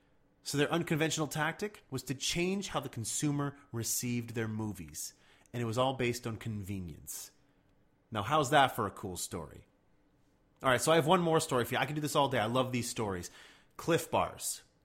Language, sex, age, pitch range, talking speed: English, male, 30-49, 115-155 Hz, 200 wpm